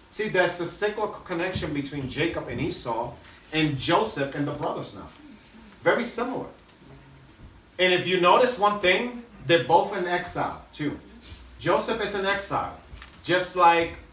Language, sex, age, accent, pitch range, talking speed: English, male, 30-49, American, 130-175 Hz, 145 wpm